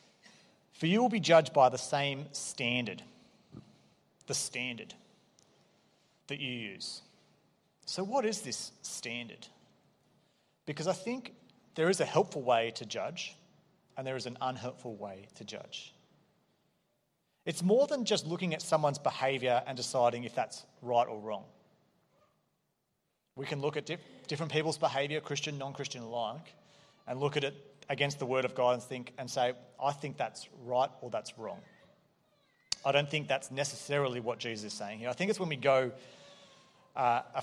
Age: 30-49